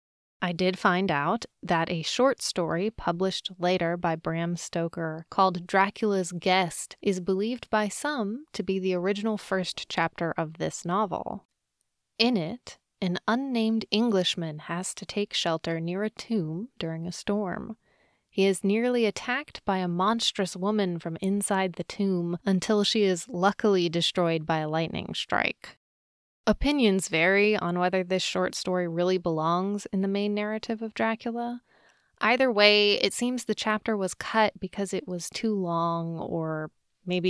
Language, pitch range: English, 170-210 Hz